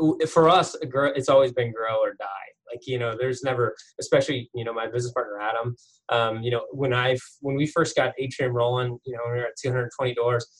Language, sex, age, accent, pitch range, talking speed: English, male, 20-39, American, 120-150 Hz, 230 wpm